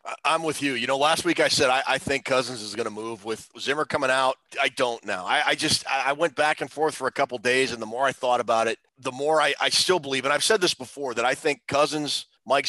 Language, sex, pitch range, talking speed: English, male, 130-160 Hz, 285 wpm